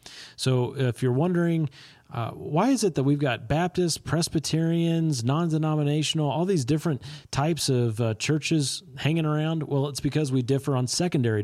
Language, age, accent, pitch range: English, 30-49, American, 115-145 Hz